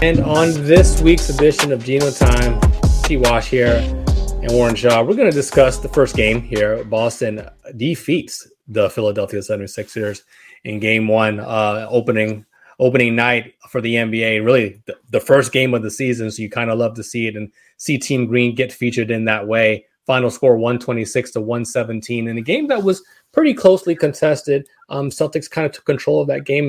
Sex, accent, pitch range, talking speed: male, American, 115-140 Hz, 190 wpm